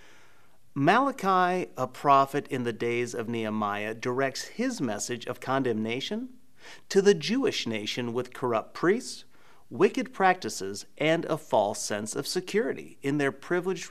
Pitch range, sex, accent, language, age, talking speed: 120-170 Hz, male, American, English, 40-59, 135 wpm